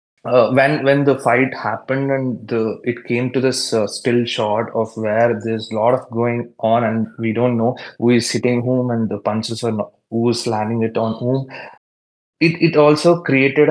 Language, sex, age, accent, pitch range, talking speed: Tamil, male, 20-39, native, 115-130 Hz, 195 wpm